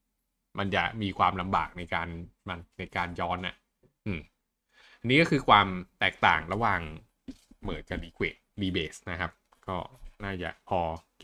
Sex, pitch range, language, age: male, 95-120 Hz, Thai, 20-39